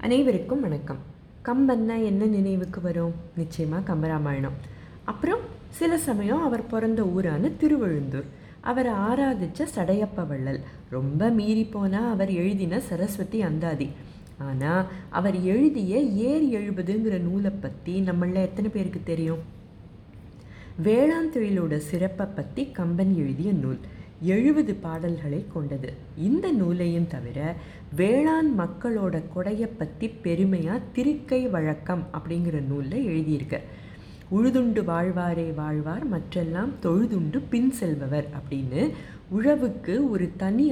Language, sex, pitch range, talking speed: Tamil, female, 160-225 Hz, 100 wpm